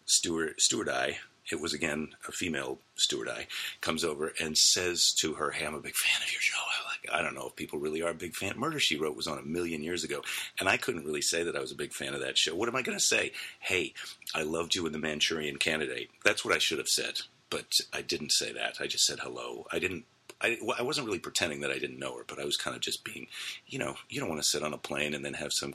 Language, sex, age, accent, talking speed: English, male, 40-59, American, 280 wpm